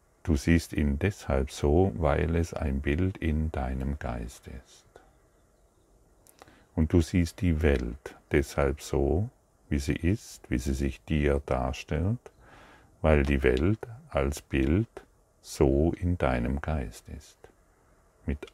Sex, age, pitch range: male, 50-69, 70-85 Hz